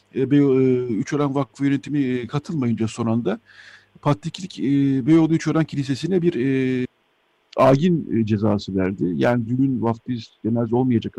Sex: male